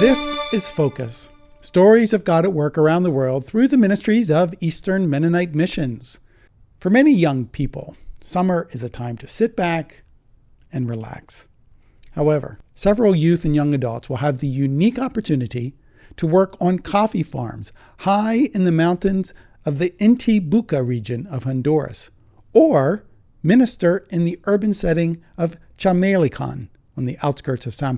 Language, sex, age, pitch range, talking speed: English, male, 50-69, 130-190 Hz, 150 wpm